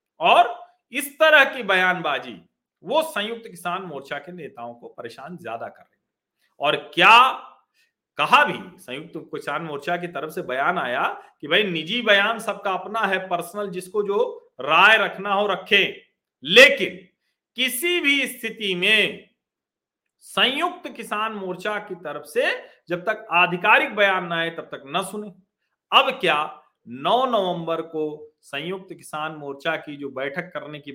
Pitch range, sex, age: 155-215 Hz, male, 50-69